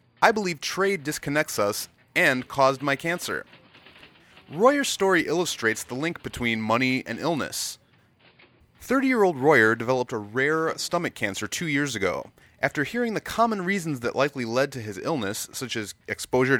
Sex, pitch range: male, 120-175 Hz